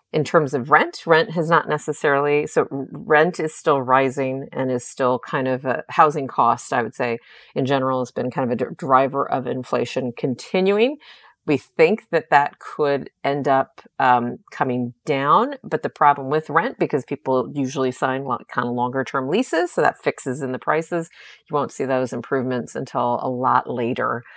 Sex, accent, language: female, American, English